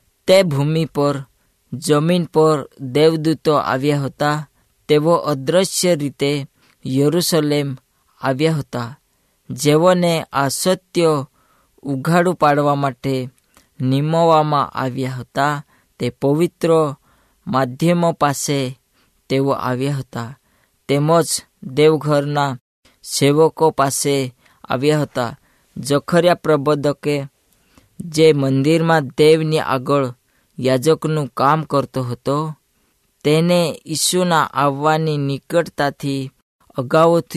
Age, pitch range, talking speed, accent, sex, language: 20-39, 135-155 Hz, 65 wpm, native, female, Hindi